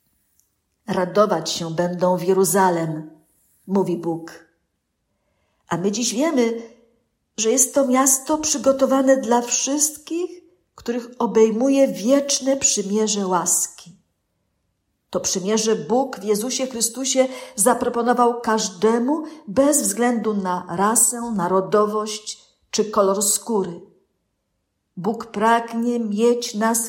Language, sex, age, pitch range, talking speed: Polish, female, 50-69, 190-240 Hz, 95 wpm